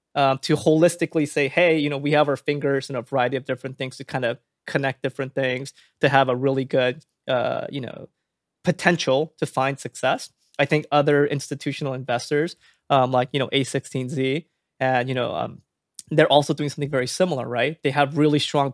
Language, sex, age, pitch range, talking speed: English, male, 20-39, 135-155 Hz, 190 wpm